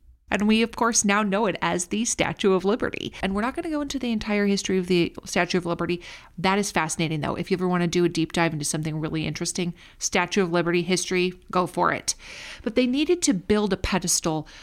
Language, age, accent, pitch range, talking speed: English, 40-59, American, 170-225 Hz, 240 wpm